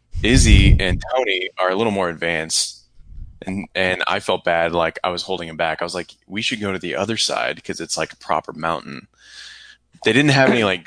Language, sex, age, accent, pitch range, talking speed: English, male, 20-39, American, 85-105 Hz, 220 wpm